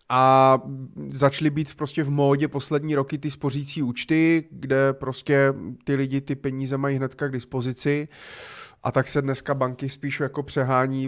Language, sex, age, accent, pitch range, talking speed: Czech, male, 30-49, native, 120-140 Hz, 155 wpm